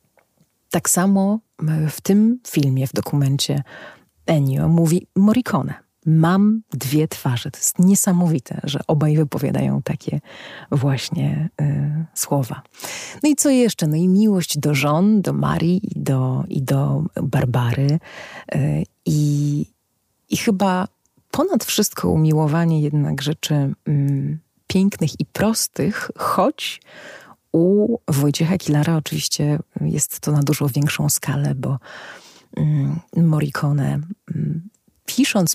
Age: 30-49